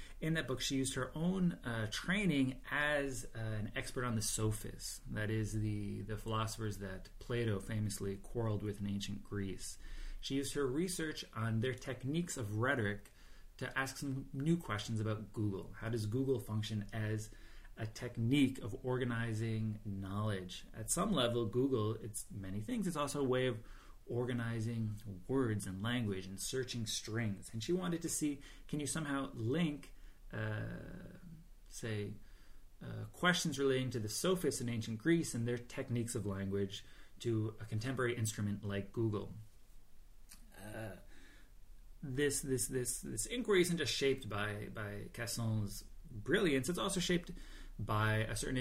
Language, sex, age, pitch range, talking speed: English, male, 30-49, 105-130 Hz, 155 wpm